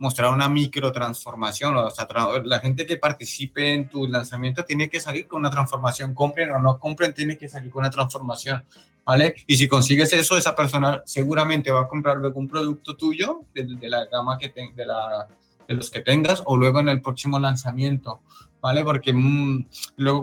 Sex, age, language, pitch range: male, 20-39, Spanish, 120-145 Hz